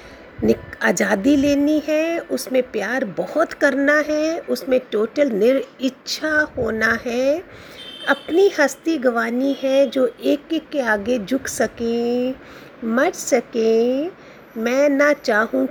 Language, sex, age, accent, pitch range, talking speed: Hindi, female, 50-69, native, 220-280 Hz, 120 wpm